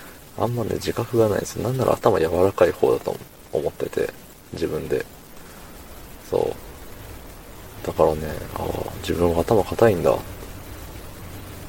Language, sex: Japanese, male